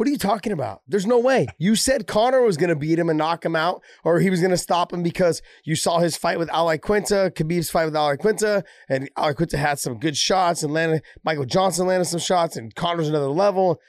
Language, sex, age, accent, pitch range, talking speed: English, male, 30-49, American, 130-180 Hz, 250 wpm